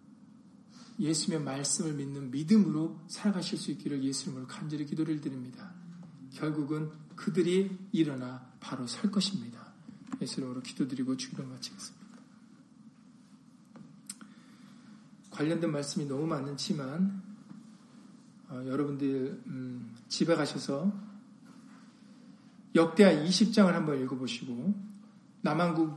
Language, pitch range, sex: Korean, 160-225 Hz, male